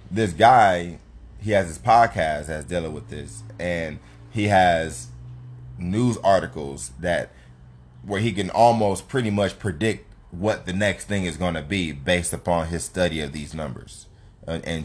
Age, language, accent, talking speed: 20-39, English, American, 160 wpm